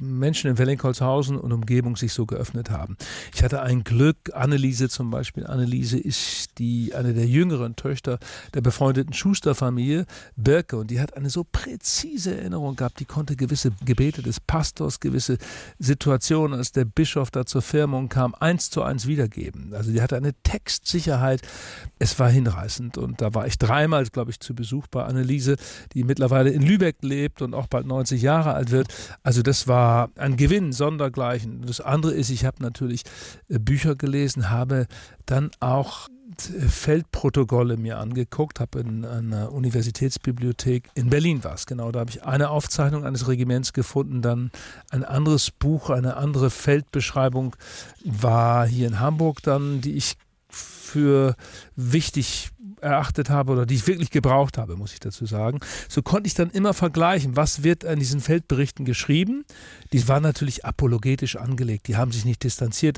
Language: German